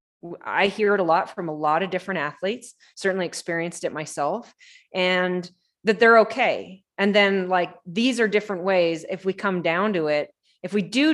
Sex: female